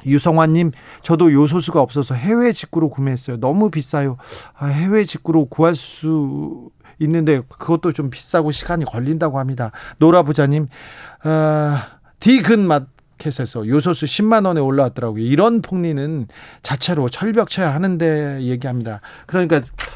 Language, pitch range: Korean, 130-170 Hz